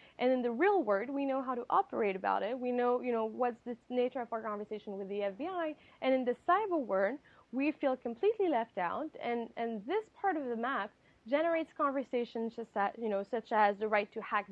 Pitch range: 225-295 Hz